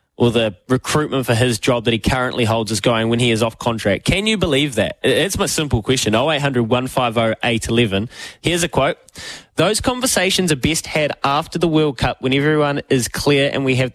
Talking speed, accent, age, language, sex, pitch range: 195 wpm, Australian, 20-39, English, male, 120-150 Hz